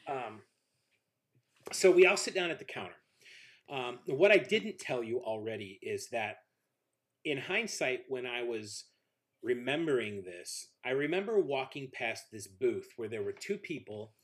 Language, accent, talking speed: English, American, 150 wpm